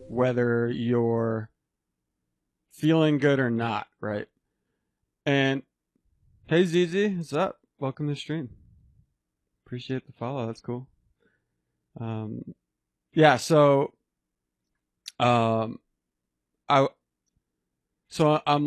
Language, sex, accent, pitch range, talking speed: English, male, American, 115-150 Hz, 90 wpm